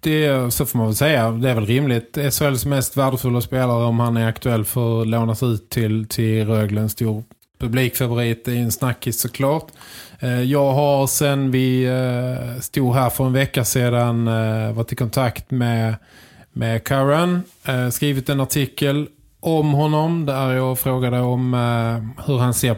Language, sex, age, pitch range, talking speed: Swedish, male, 20-39, 115-135 Hz, 160 wpm